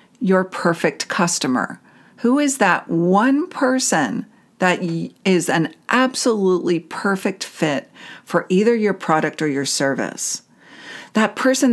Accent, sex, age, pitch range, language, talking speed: American, female, 50-69, 165-235 Hz, English, 120 wpm